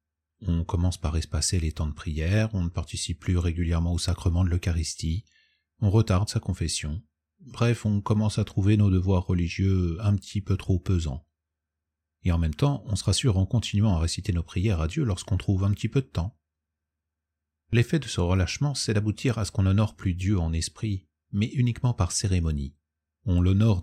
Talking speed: 190 wpm